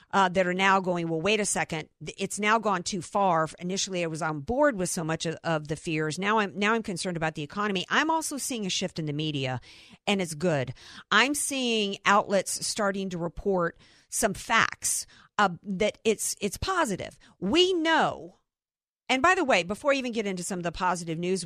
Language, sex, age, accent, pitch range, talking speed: English, female, 50-69, American, 170-225 Hz, 205 wpm